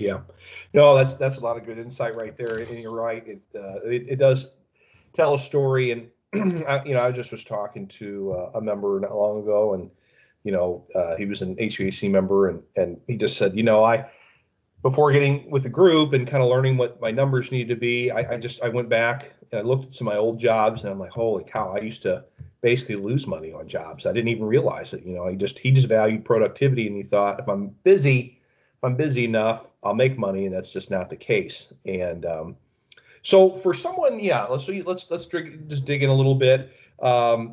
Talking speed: 230 wpm